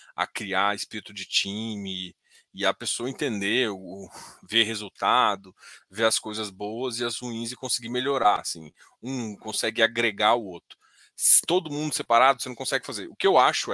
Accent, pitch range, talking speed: Brazilian, 115-155 Hz, 165 wpm